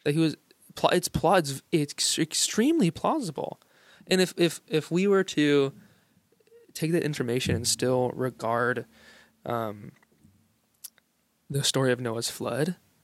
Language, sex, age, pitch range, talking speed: English, male, 20-39, 125-155 Hz, 120 wpm